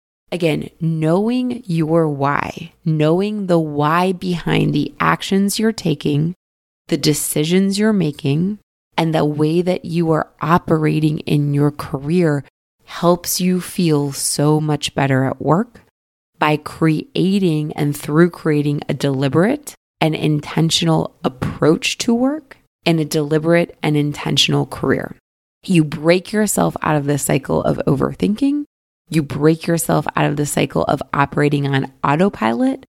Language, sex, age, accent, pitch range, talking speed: English, female, 20-39, American, 145-175 Hz, 130 wpm